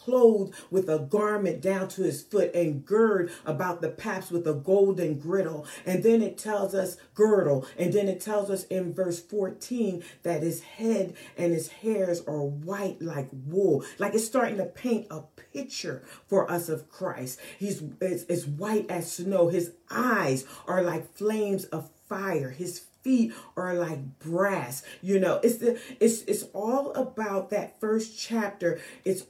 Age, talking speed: 40-59, 165 wpm